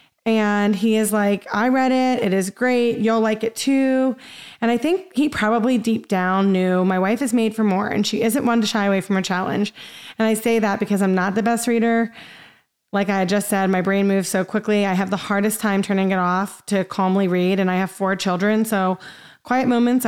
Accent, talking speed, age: American, 225 wpm, 30-49